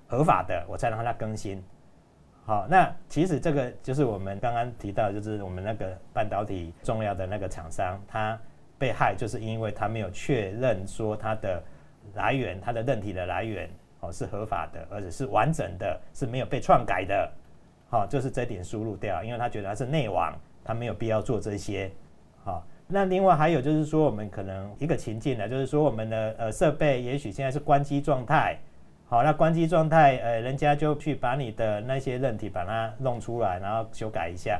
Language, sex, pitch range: Chinese, male, 105-145 Hz